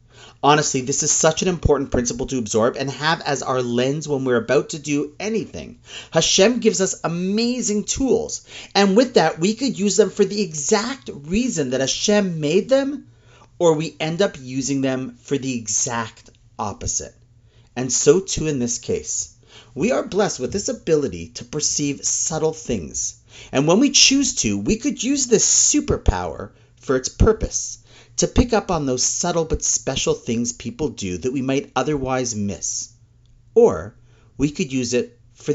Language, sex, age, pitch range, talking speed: English, male, 40-59, 120-185 Hz, 170 wpm